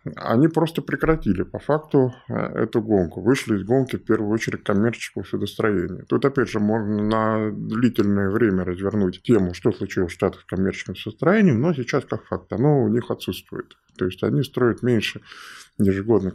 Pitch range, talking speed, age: 100-125 Hz, 165 wpm, 20-39